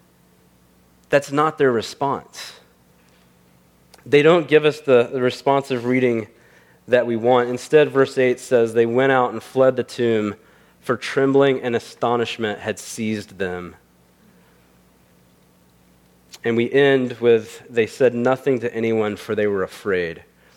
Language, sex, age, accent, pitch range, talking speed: English, male, 30-49, American, 90-150 Hz, 135 wpm